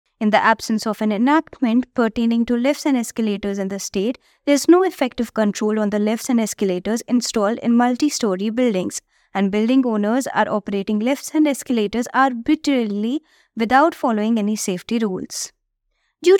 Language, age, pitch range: English, 20-39, 215-275 Hz